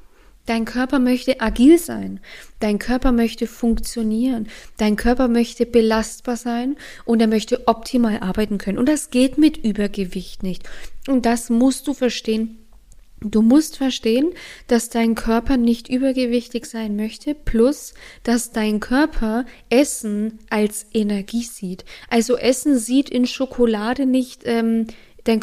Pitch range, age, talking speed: 210-245 Hz, 20-39, 135 wpm